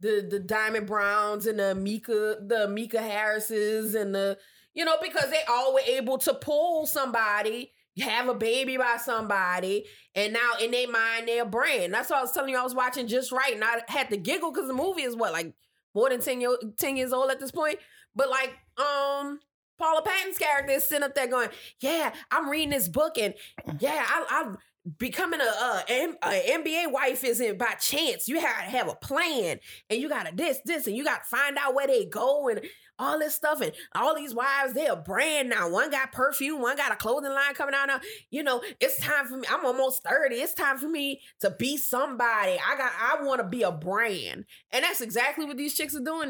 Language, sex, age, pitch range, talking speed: English, female, 20-39, 225-290 Hz, 220 wpm